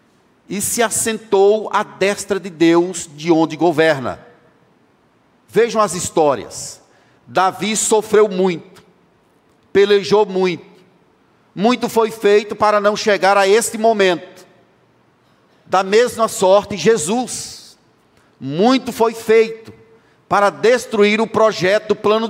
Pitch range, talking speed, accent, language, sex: 180-210 Hz, 105 wpm, Brazilian, Portuguese, male